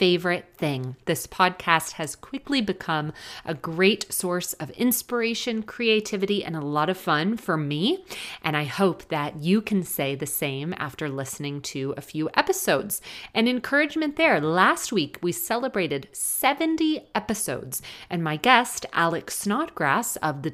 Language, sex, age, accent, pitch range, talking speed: English, female, 30-49, American, 155-220 Hz, 150 wpm